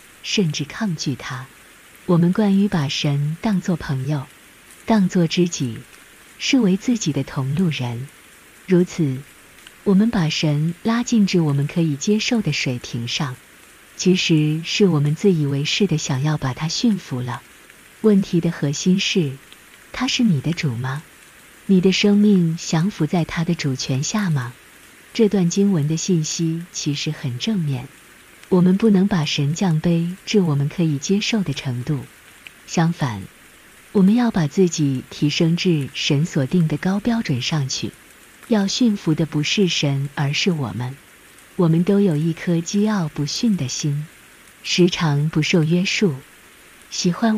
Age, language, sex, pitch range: 50-69, Chinese, female, 145-190 Hz